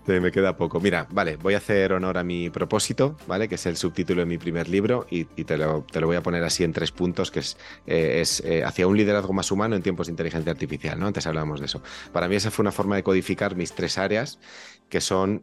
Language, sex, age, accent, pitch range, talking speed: Spanish, male, 30-49, Spanish, 85-100 Hz, 265 wpm